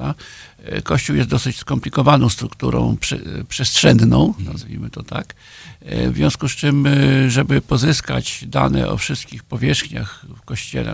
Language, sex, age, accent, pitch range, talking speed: Polish, male, 50-69, native, 95-135 Hz, 120 wpm